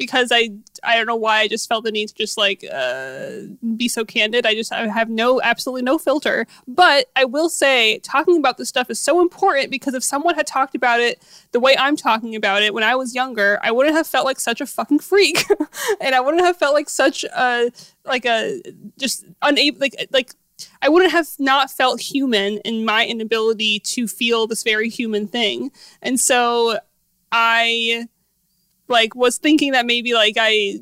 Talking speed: 200 wpm